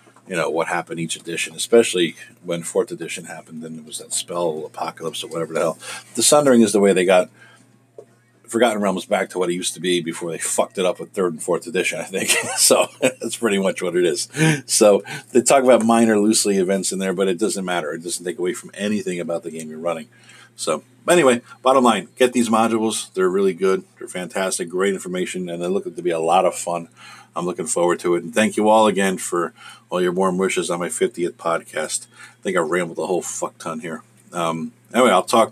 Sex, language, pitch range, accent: male, English, 85-115 Hz, American